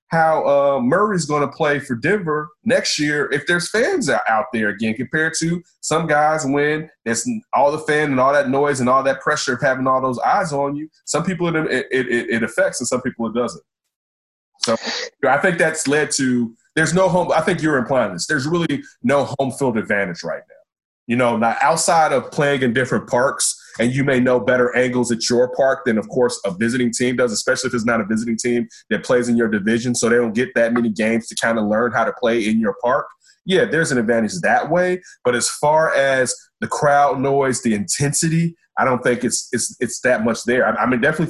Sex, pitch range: male, 115-155 Hz